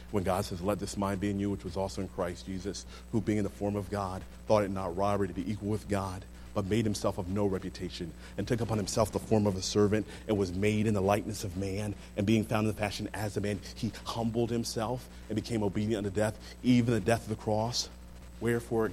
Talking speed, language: 245 wpm, English